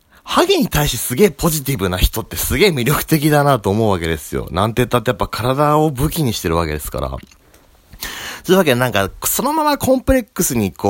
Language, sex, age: Japanese, male, 40-59